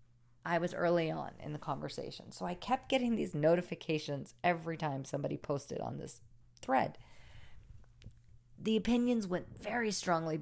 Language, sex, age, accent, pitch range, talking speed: English, female, 40-59, American, 120-185 Hz, 145 wpm